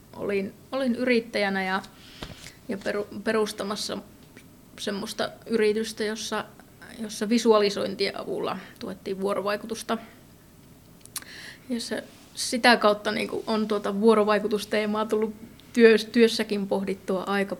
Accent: native